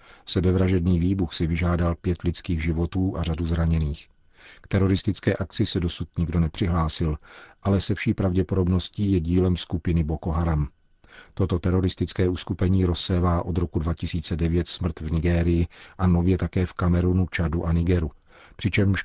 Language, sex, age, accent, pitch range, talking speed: Czech, male, 40-59, native, 85-95 Hz, 140 wpm